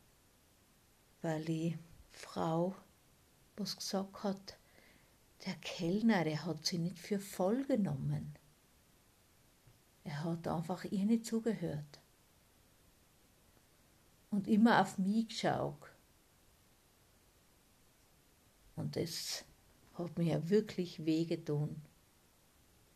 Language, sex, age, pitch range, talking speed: German, female, 50-69, 165-195 Hz, 85 wpm